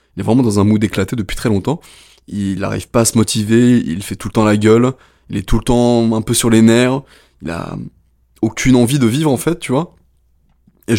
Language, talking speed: French, 240 wpm